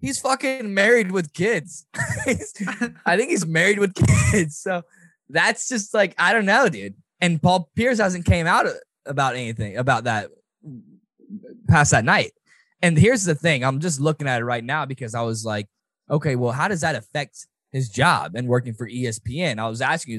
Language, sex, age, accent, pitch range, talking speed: English, male, 10-29, American, 130-180 Hz, 185 wpm